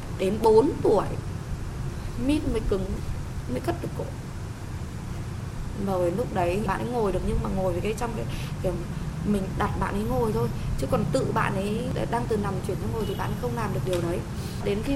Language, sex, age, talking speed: Vietnamese, female, 20-39, 210 wpm